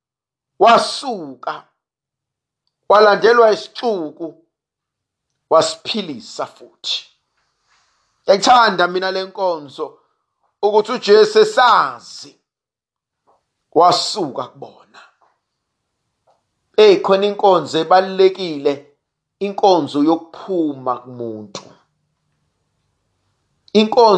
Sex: male